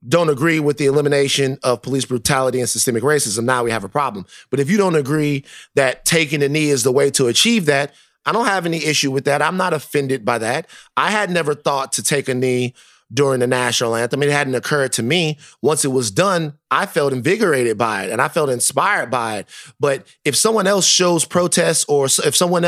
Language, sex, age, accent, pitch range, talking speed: English, male, 30-49, American, 130-165 Hz, 220 wpm